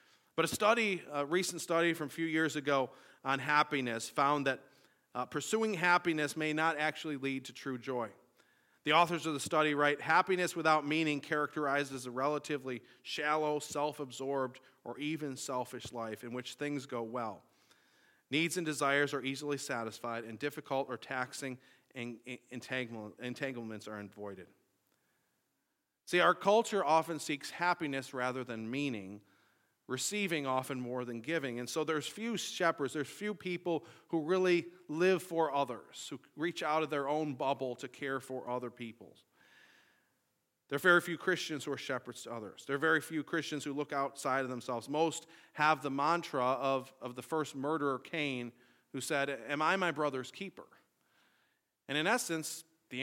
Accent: American